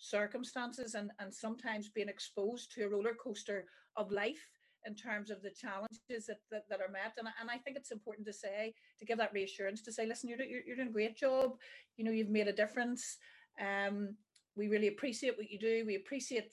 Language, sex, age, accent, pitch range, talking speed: English, female, 40-59, Irish, 205-250 Hz, 215 wpm